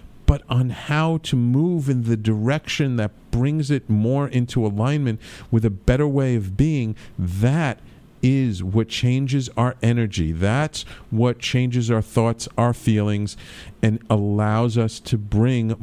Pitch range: 110-150 Hz